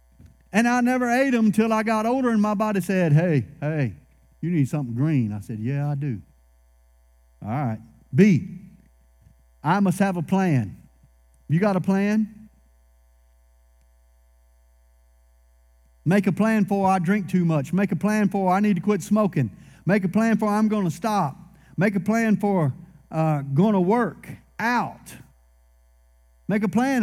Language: English